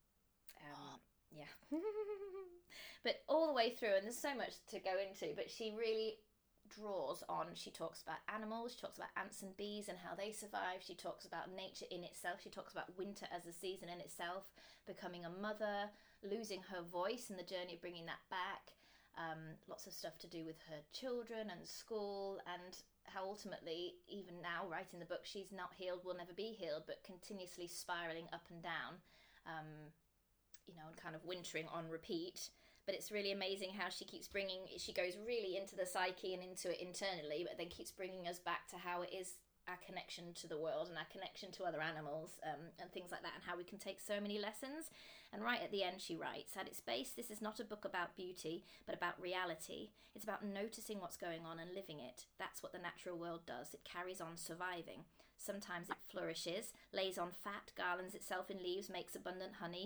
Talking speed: 205 wpm